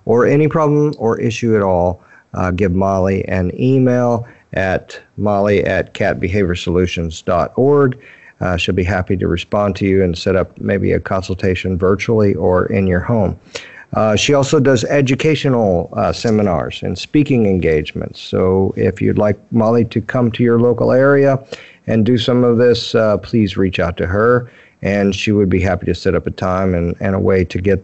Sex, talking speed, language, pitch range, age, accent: male, 175 wpm, English, 95-120 Hz, 50-69, American